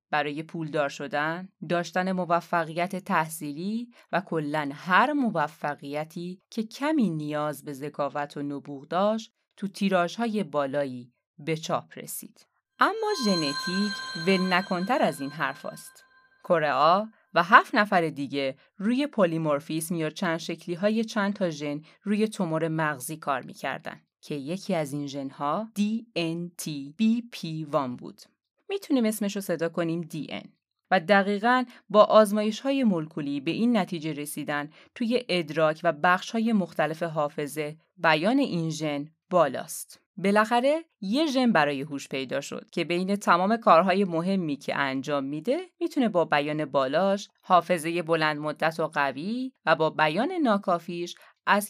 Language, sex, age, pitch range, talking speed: Persian, female, 30-49, 155-215 Hz, 130 wpm